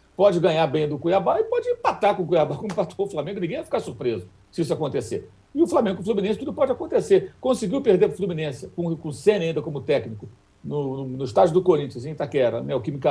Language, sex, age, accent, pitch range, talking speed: Portuguese, male, 60-79, Brazilian, 180-275 Hz, 240 wpm